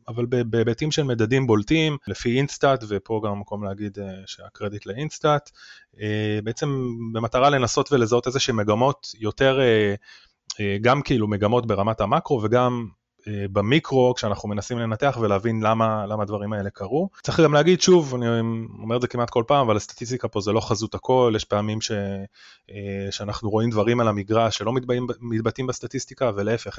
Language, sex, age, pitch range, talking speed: Hebrew, male, 20-39, 100-125 Hz, 150 wpm